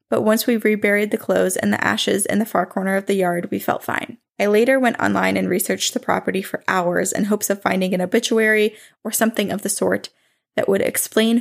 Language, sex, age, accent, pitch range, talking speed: English, female, 20-39, American, 195-240 Hz, 225 wpm